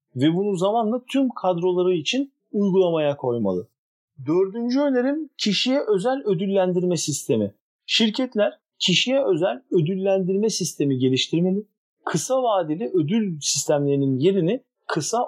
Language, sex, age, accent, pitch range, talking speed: Turkish, male, 50-69, native, 160-225 Hz, 100 wpm